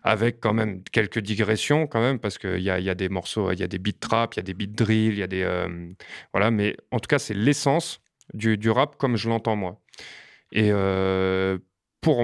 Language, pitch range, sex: French, 100-125 Hz, male